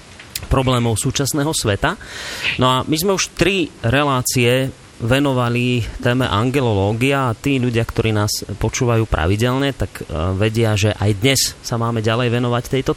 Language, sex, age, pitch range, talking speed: Slovak, male, 30-49, 110-135 Hz, 140 wpm